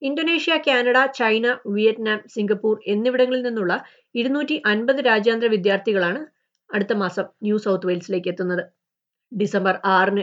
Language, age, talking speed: Malayalam, 30-49, 110 wpm